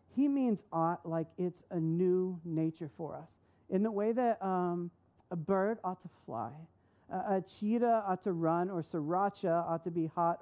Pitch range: 165-205 Hz